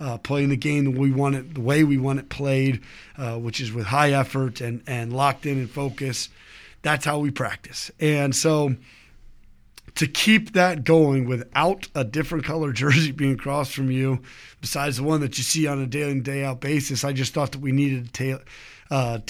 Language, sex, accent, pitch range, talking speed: English, male, American, 135-155 Hz, 200 wpm